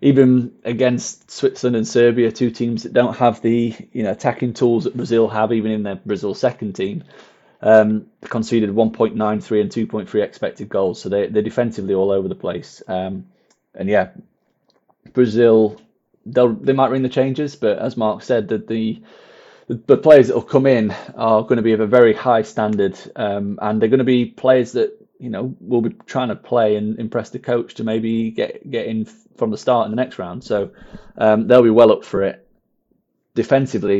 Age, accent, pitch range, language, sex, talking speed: 20-39, British, 105-125 Hz, English, male, 190 wpm